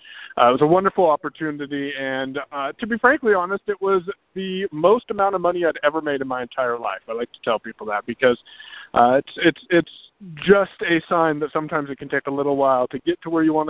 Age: 50-69